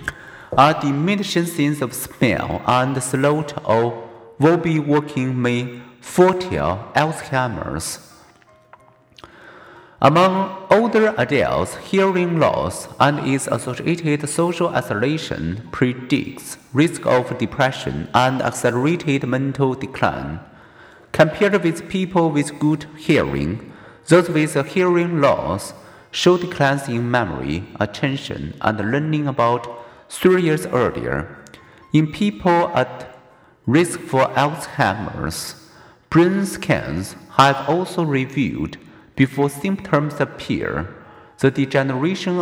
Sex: male